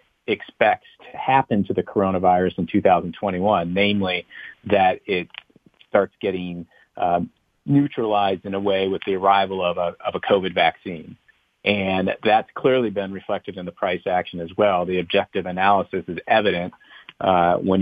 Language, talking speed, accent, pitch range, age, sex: English, 150 wpm, American, 90-100 Hz, 40-59, male